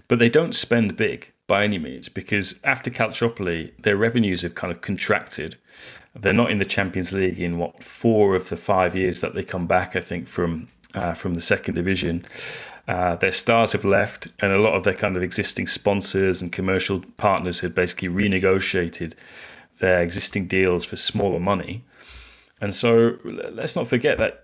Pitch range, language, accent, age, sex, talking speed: 90-115 Hz, English, British, 30-49, male, 180 wpm